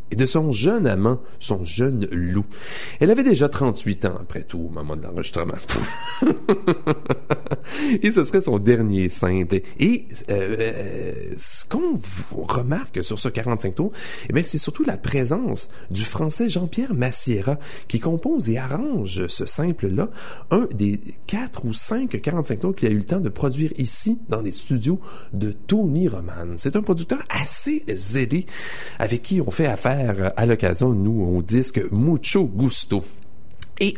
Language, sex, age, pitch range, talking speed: English, male, 40-59, 95-155 Hz, 160 wpm